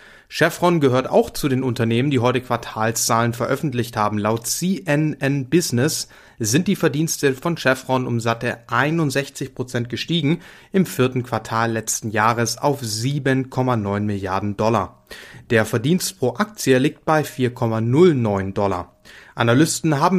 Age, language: 30-49, English